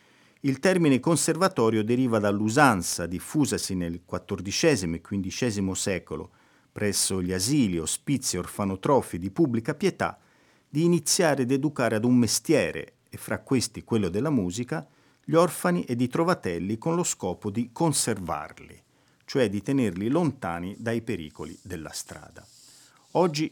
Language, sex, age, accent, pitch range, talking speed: Italian, male, 50-69, native, 95-135 Hz, 135 wpm